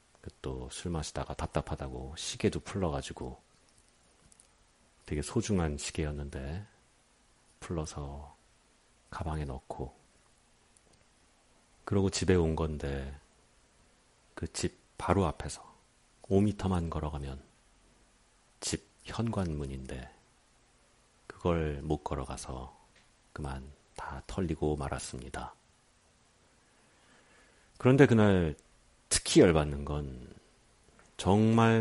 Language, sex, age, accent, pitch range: Korean, male, 40-59, native, 70-95 Hz